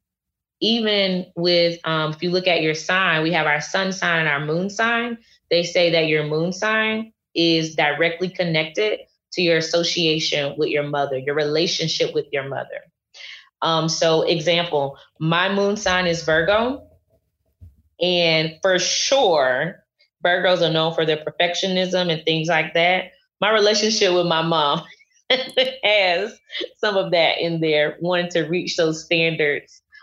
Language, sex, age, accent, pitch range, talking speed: English, female, 20-39, American, 155-185 Hz, 150 wpm